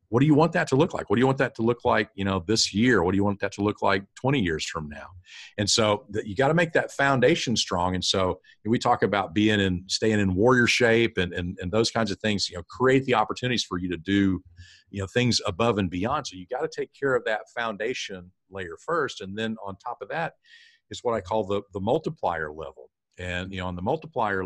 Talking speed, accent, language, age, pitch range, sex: 260 wpm, American, English, 50-69, 95-125 Hz, male